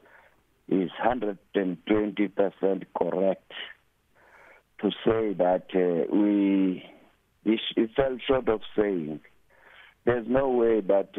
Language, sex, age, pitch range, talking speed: English, male, 60-79, 95-115 Hz, 90 wpm